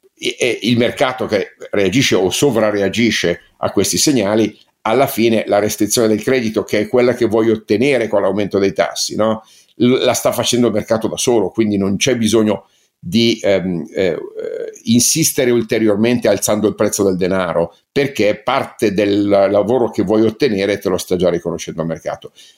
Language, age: Italian, 50-69